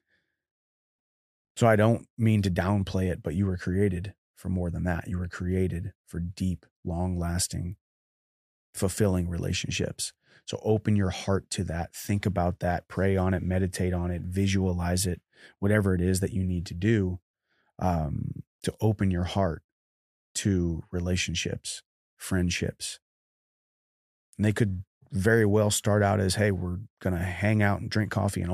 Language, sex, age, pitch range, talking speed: English, male, 30-49, 90-105 Hz, 155 wpm